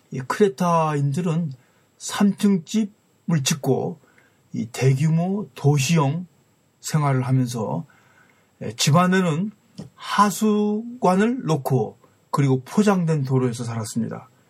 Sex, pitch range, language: male, 130-180 Hz, Korean